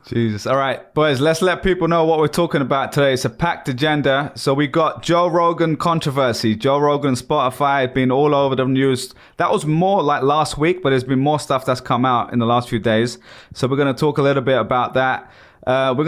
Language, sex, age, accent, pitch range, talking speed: English, male, 20-39, British, 130-150 Hz, 230 wpm